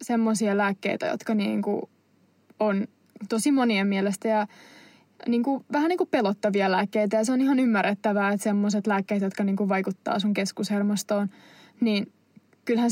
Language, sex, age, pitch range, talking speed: Finnish, female, 20-39, 205-230 Hz, 135 wpm